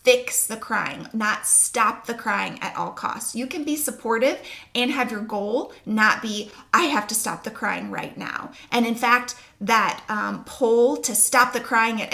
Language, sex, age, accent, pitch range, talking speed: English, female, 30-49, American, 225-270 Hz, 195 wpm